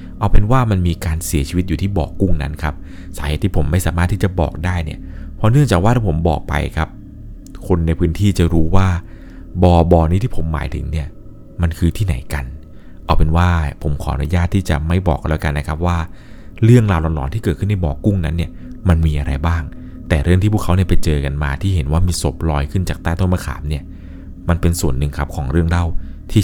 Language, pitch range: Thai, 80-100 Hz